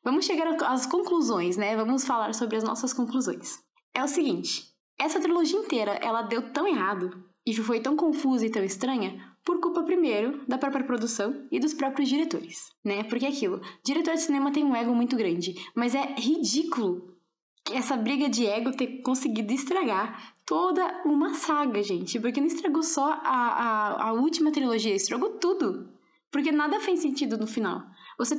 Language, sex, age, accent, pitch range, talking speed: Portuguese, female, 10-29, Brazilian, 230-305 Hz, 175 wpm